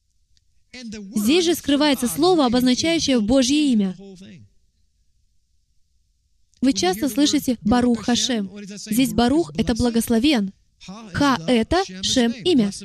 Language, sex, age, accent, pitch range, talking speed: Russian, female, 20-39, native, 195-285 Hz, 95 wpm